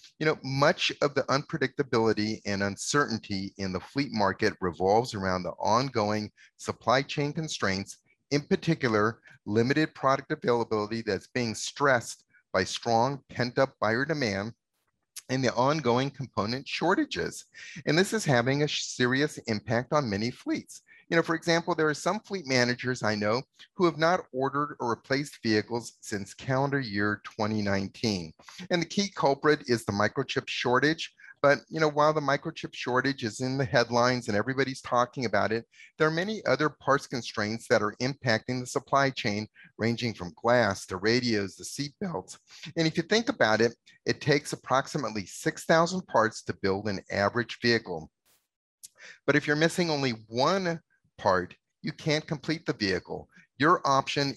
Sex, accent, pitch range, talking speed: male, American, 110-150 Hz, 155 wpm